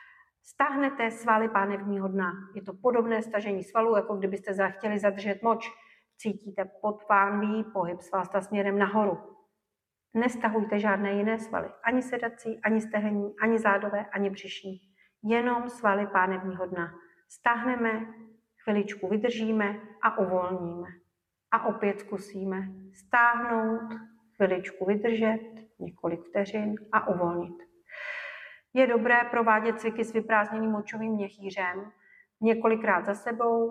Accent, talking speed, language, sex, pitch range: native, 110 wpm, Czech, female, 185-220 Hz